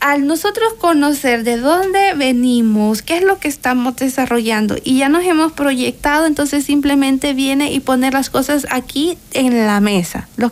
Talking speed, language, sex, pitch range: 165 wpm, Spanish, female, 255-315 Hz